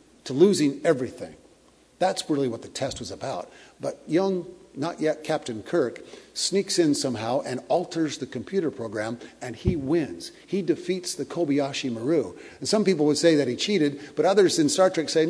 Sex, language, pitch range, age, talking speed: male, English, 130-175 Hz, 50-69, 180 wpm